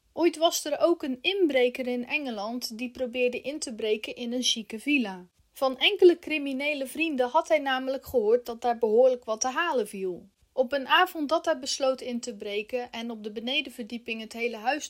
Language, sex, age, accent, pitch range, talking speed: Dutch, female, 30-49, Dutch, 235-295 Hz, 195 wpm